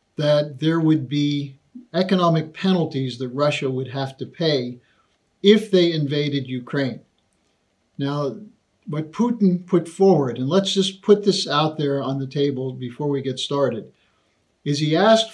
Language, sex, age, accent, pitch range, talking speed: English, male, 50-69, American, 140-170 Hz, 150 wpm